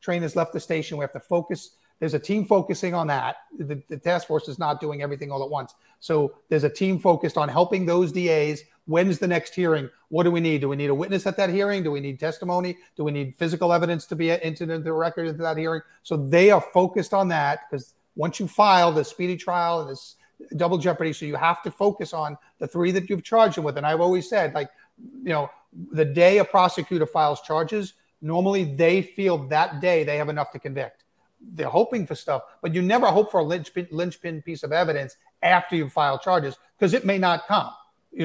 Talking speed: 230 wpm